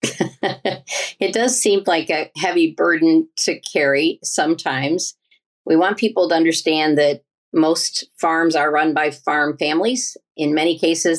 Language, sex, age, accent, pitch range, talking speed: English, female, 50-69, American, 150-205 Hz, 140 wpm